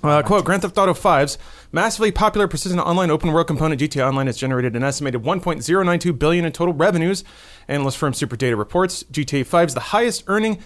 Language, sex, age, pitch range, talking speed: English, male, 30-49, 135-180 Hz, 180 wpm